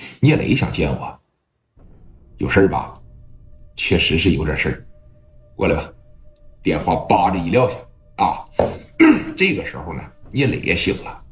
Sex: male